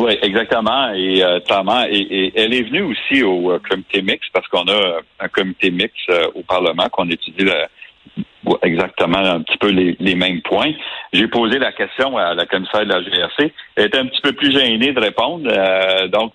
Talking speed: 205 wpm